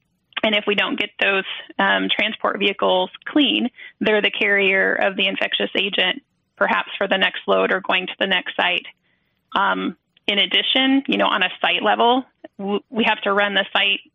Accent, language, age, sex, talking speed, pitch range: American, English, 30-49, female, 185 wpm, 185-220 Hz